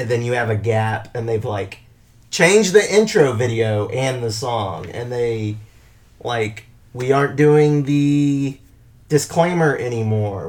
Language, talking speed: English, 145 wpm